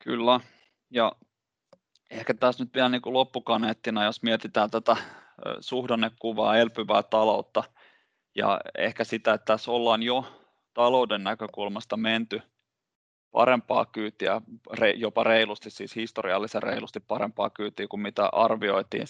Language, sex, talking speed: Finnish, male, 110 wpm